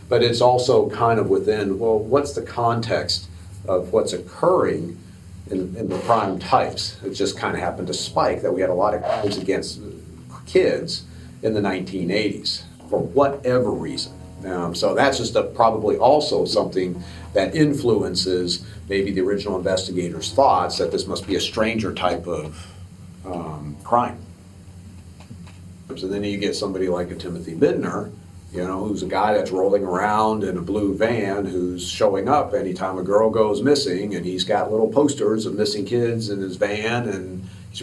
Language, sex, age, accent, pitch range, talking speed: English, male, 40-59, American, 90-105 Hz, 170 wpm